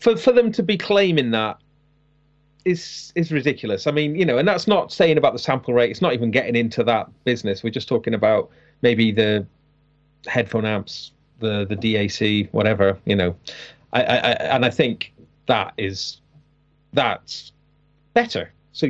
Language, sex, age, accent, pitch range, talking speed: English, male, 40-59, British, 110-145 Hz, 170 wpm